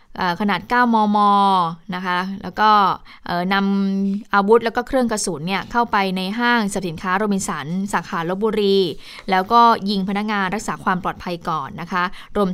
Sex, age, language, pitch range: female, 20-39, Thai, 180-210 Hz